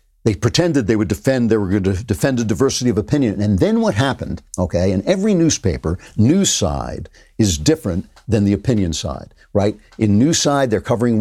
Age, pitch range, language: 50-69, 105-140 Hz, English